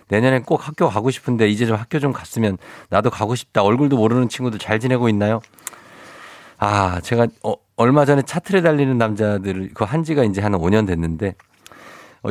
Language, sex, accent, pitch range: Korean, male, native, 95-130 Hz